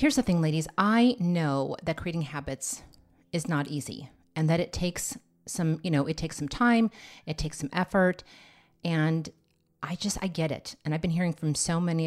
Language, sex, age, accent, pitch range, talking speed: English, female, 30-49, American, 150-180 Hz, 200 wpm